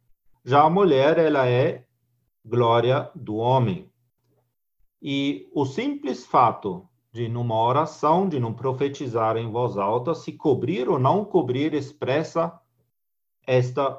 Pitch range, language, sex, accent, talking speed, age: 120-160 Hz, Portuguese, male, Brazilian, 120 wpm, 50-69